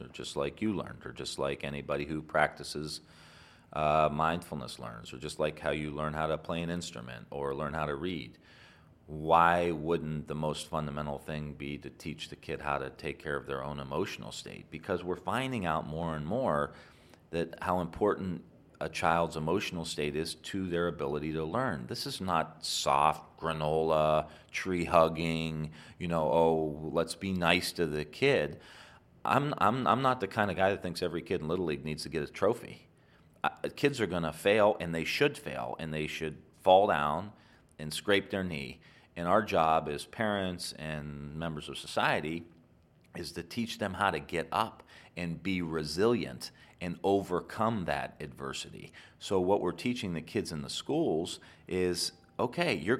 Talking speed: 180 wpm